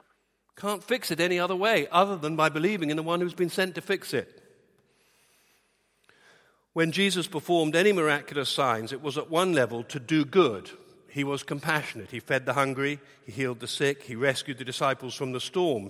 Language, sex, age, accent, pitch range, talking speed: English, male, 50-69, British, 130-175 Hz, 195 wpm